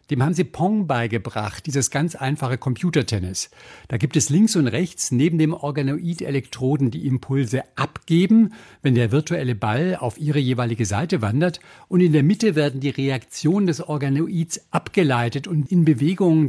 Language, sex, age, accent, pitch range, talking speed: German, male, 60-79, German, 130-170 Hz, 160 wpm